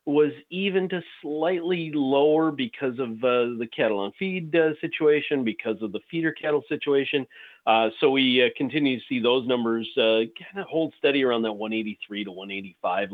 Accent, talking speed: American, 180 wpm